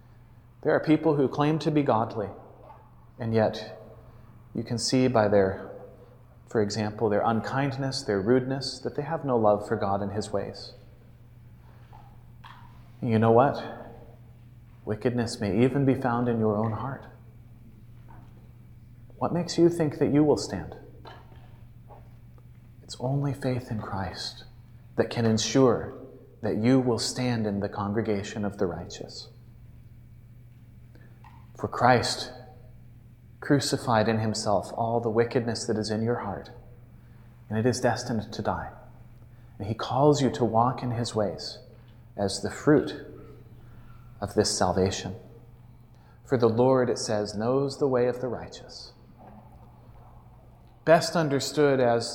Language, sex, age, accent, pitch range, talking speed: English, male, 30-49, American, 110-125 Hz, 135 wpm